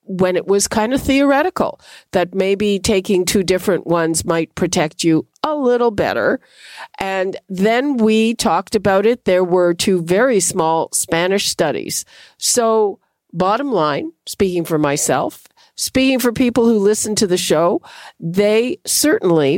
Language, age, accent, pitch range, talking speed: English, 50-69, American, 170-230 Hz, 145 wpm